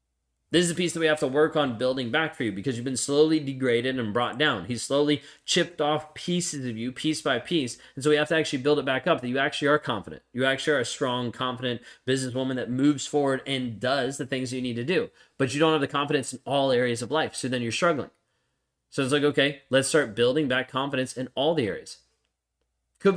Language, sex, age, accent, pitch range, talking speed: English, male, 20-39, American, 120-150 Hz, 245 wpm